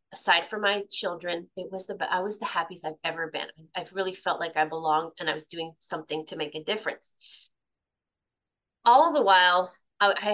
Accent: American